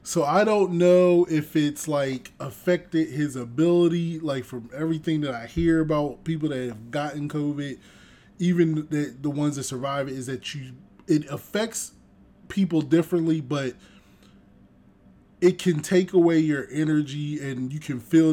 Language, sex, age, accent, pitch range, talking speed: English, male, 20-39, American, 135-165 Hz, 155 wpm